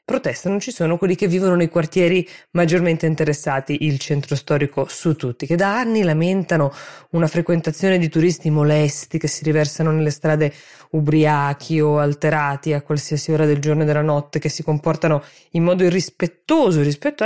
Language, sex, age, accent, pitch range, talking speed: Italian, female, 20-39, native, 150-185 Hz, 165 wpm